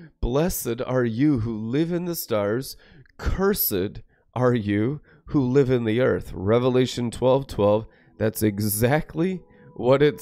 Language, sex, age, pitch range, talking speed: English, male, 30-49, 110-140 Hz, 135 wpm